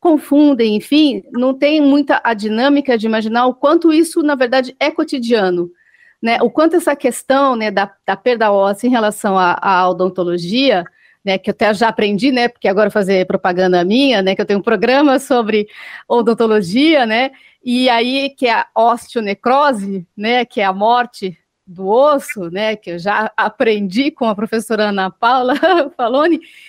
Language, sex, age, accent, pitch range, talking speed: Portuguese, female, 40-59, Brazilian, 215-285 Hz, 165 wpm